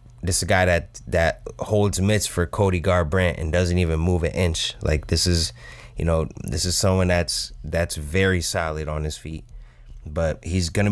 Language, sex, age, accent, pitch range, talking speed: English, male, 20-39, American, 85-115 Hz, 190 wpm